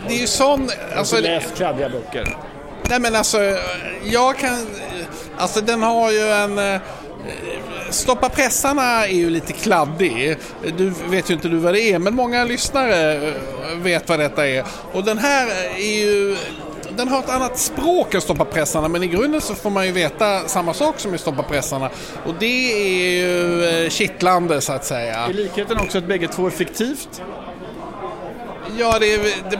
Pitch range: 165-220 Hz